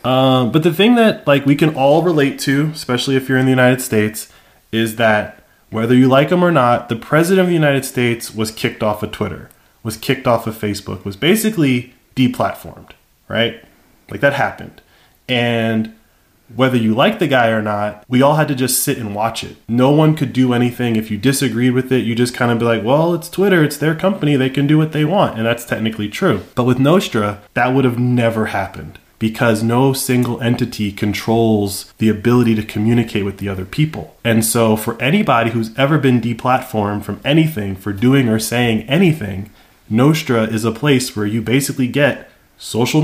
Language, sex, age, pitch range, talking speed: English, male, 20-39, 105-135 Hz, 200 wpm